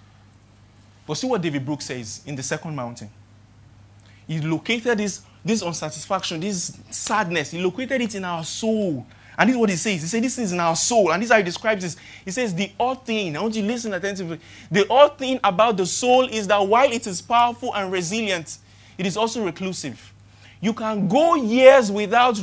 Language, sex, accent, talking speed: English, male, Nigerian, 205 wpm